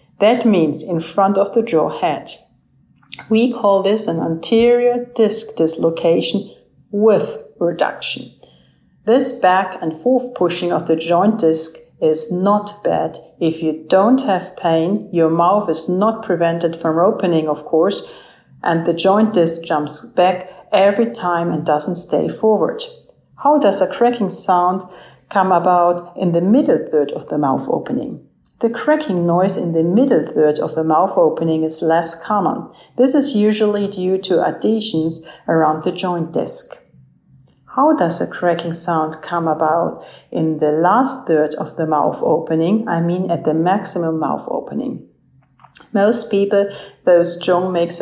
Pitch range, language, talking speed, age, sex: 165-210 Hz, English, 150 wpm, 50-69, female